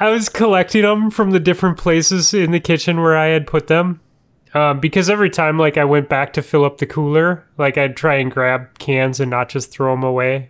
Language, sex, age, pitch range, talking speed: English, male, 20-39, 135-165 Hz, 235 wpm